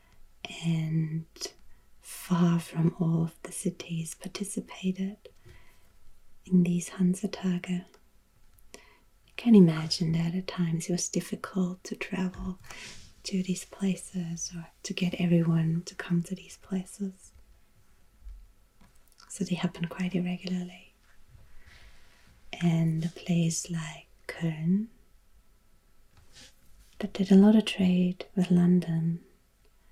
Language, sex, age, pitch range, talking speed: English, female, 30-49, 165-185 Hz, 105 wpm